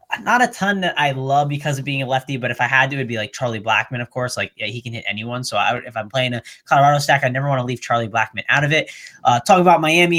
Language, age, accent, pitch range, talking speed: English, 20-39, American, 120-150 Hz, 310 wpm